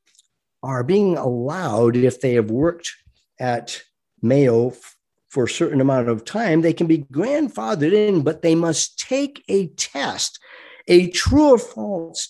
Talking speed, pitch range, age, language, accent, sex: 145 wpm, 125-195 Hz, 50-69, English, American, male